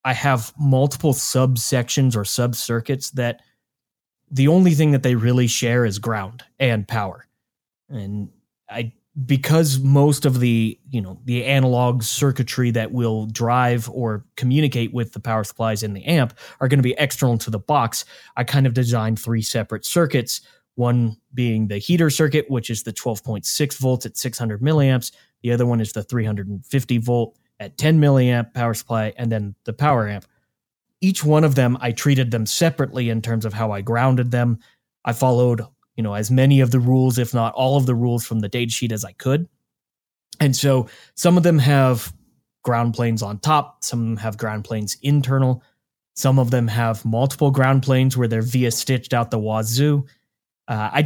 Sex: male